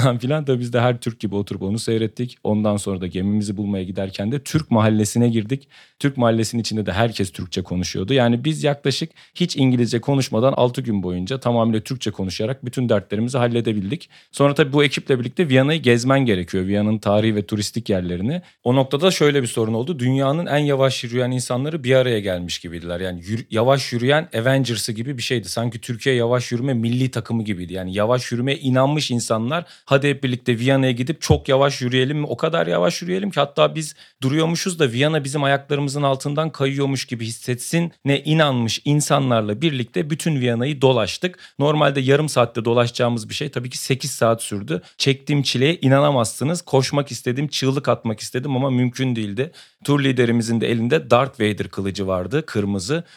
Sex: male